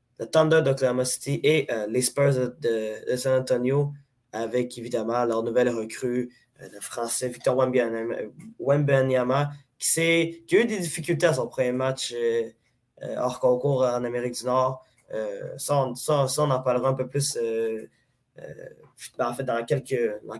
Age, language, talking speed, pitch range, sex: 20-39, French, 175 wpm, 125-145 Hz, male